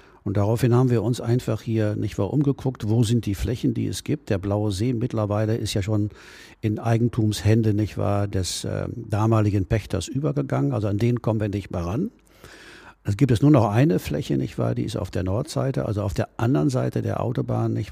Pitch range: 100-120 Hz